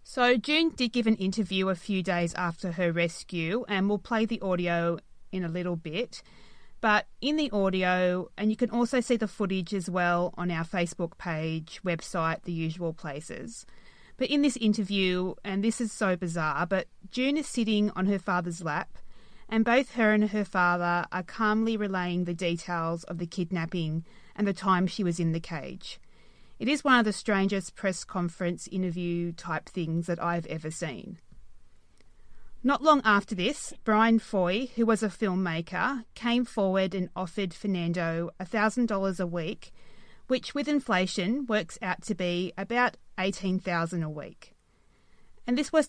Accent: Australian